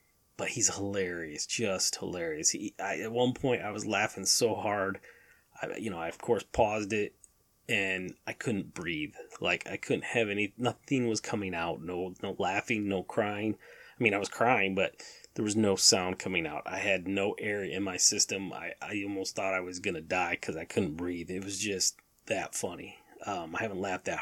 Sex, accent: male, American